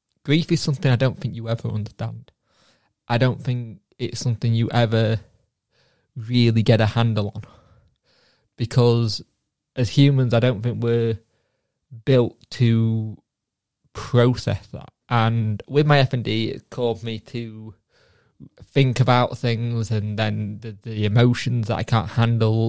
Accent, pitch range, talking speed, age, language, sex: British, 110-125 Hz, 140 wpm, 20-39, English, male